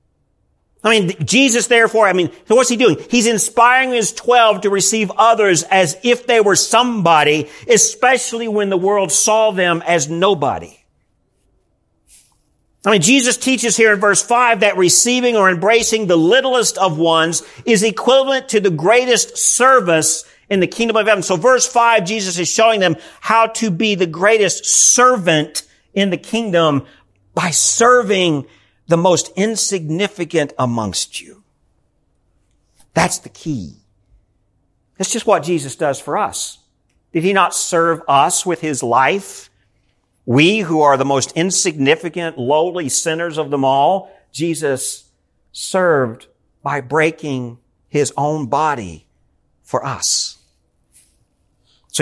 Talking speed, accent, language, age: 135 wpm, American, English, 50-69